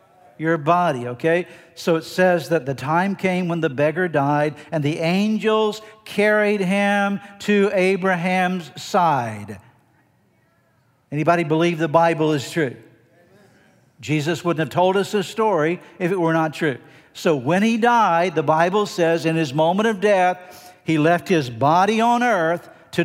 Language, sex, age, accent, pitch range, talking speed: English, male, 60-79, American, 160-190 Hz, 155 wpm